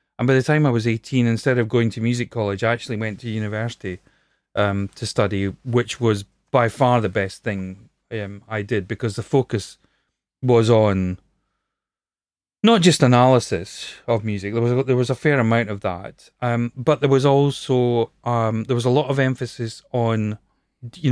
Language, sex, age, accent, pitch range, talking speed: English, male, 30-49, British, 105-130 Hz, 180 wpm